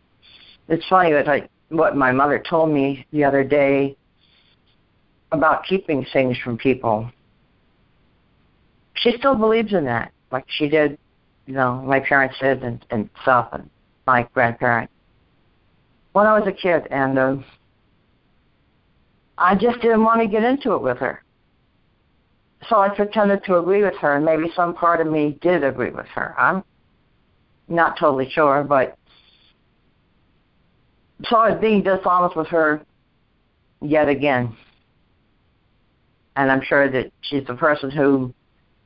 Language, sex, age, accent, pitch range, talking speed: English, female, 60-79, American, 120-165 Hz, 140 wpm